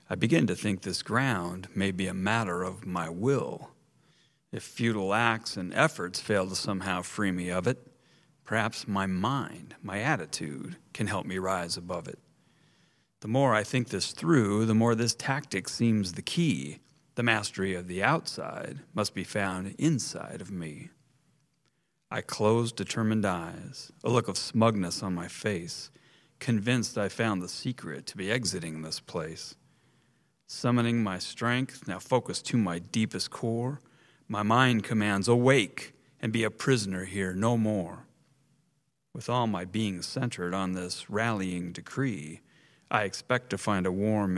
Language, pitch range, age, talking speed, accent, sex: English, 95-125 Hz, 40-59, 155 wpm, American, male